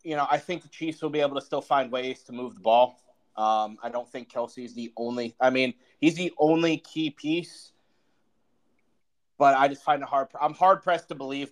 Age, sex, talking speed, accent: 30-49, male, 220 wpm, American